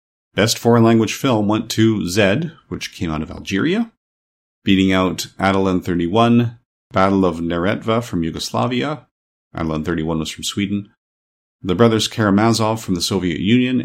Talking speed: 145 wpm